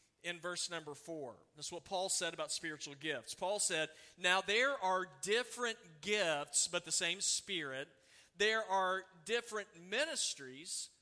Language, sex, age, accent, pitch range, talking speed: English, male, 40-59, American, 155-205 Hz, 140 wpm